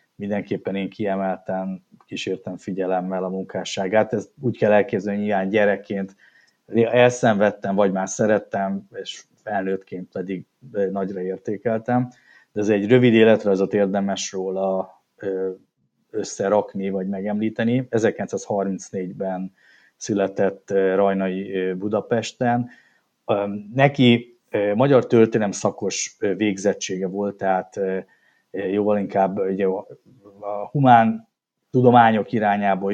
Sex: male